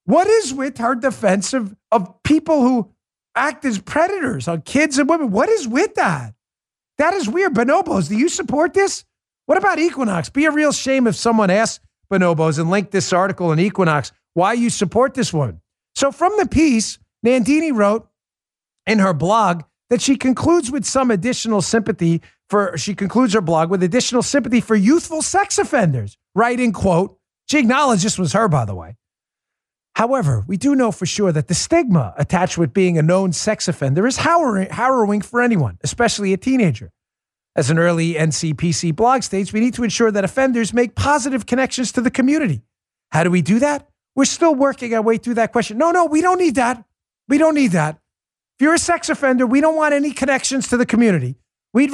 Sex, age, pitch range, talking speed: male, 50-69, 185-280 Hz, 190 wpm